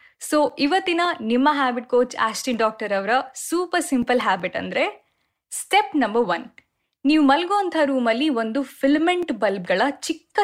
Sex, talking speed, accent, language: female, 125 wpm, native, Kannada